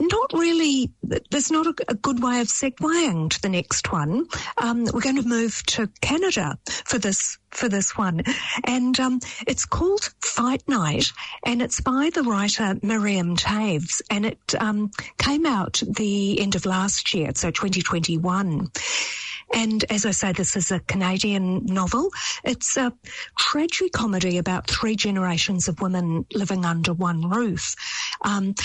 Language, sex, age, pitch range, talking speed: English, female, 50-69, 180-240 Hz, 155 wpm